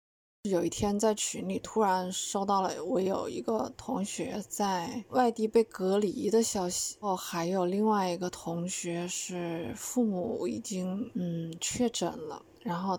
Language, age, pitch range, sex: Chinese, 20-39, 185-225 Hz, female